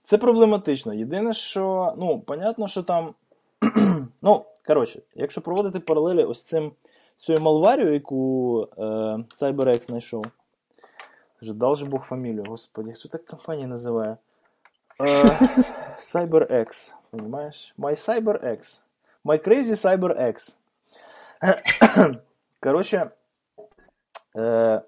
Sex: male